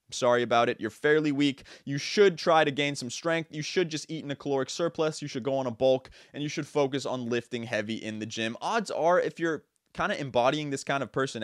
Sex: male